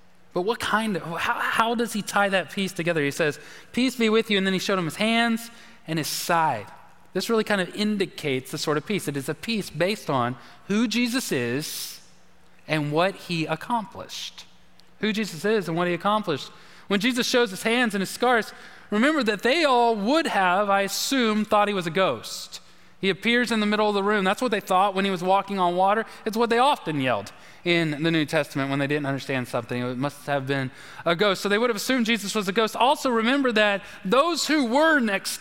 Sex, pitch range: male, 165-220 Hz